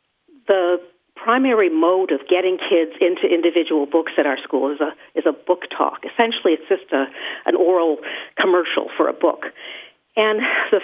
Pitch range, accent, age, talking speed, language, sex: 170-240 Hz, American, 50-69, 165 wpm, English, female